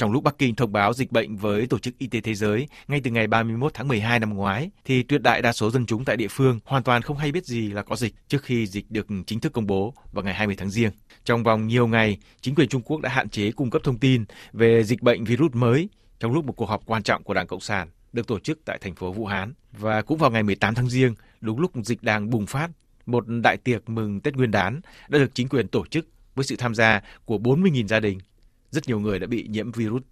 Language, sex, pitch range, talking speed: Vietnamese, male, 105-130 Hz, 270 wpm